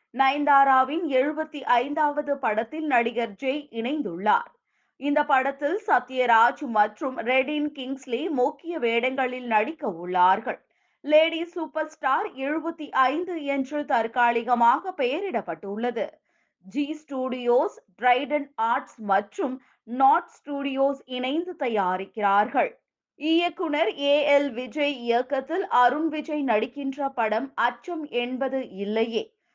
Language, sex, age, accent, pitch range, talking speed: Tamil, female, 20-39, native, 235-305 Hz, 90 wpm